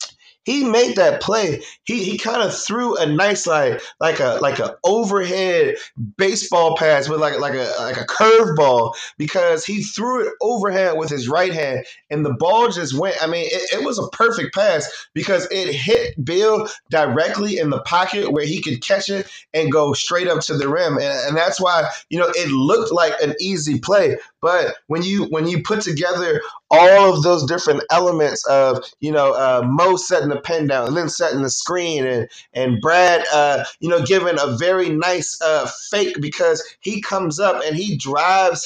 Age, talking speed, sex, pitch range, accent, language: 20-39, 195 wpm, male, 150-205 Hz, American, English